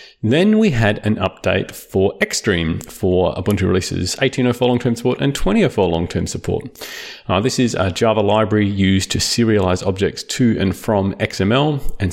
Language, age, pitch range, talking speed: English, 30-49, 95-120 Hz, 160 wpm